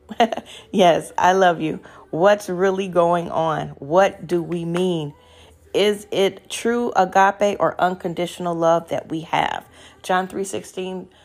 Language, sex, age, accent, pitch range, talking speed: English, female, 40-59, American, 165-200 Hz, 135 wpm